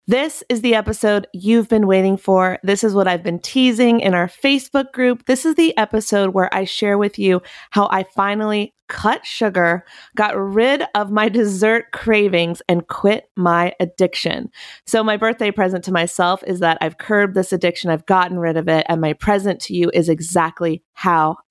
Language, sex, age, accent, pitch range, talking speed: English, female, 30-49, American, 185-225 Hz, 185 wpm